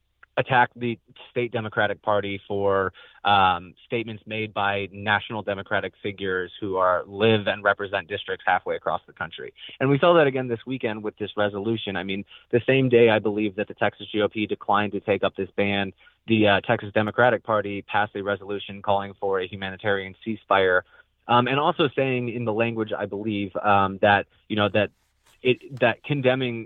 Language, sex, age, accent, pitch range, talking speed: English, male, 20-39, American, 100-115 Hz, 180 wpm